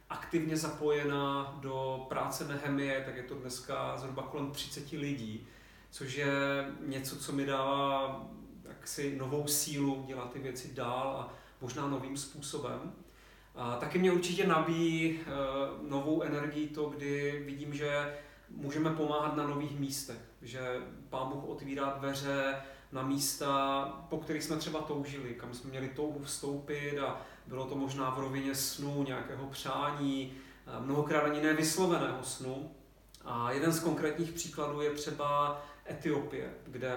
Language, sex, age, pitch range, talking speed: Czech, male, 30-49, 135-150 Hz, 140 wpm